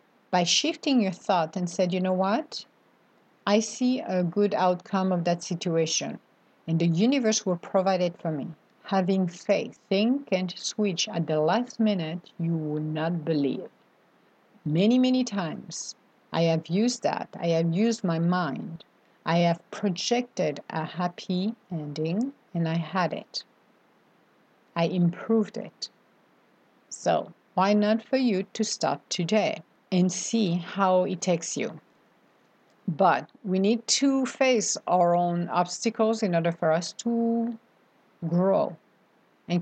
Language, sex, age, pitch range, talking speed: English, female, 50-69, 175-225 Hz, 140 wpm